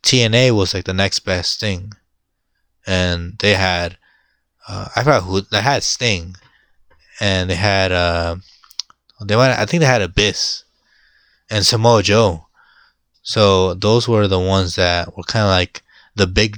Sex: male